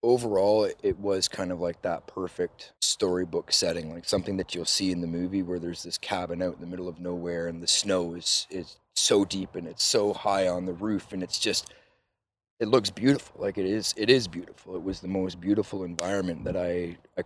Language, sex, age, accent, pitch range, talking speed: English, male, 30-49, American, 85-100 Hz, 220 wpm